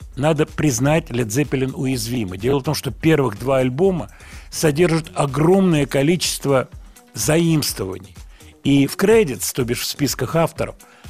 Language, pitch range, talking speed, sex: Russian, 115-160 Hz, 130 wpm, male